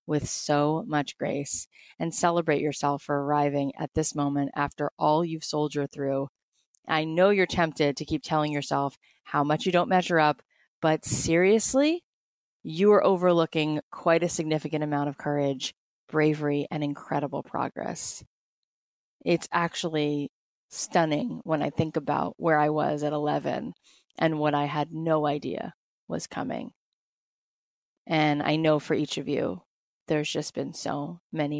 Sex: female